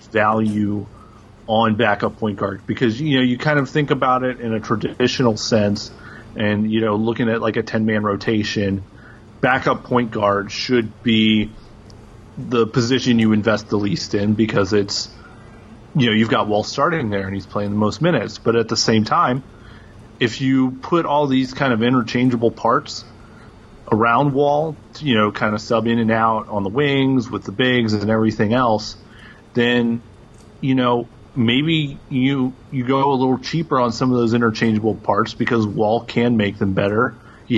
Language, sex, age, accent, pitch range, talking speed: English, male, 30-49, American, 105-125 Hz, 175 wpm